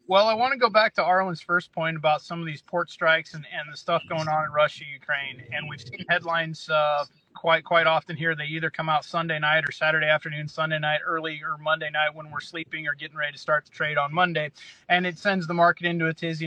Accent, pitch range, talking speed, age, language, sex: American, 155-180 Hz, 250 wpm, 30-49, English, male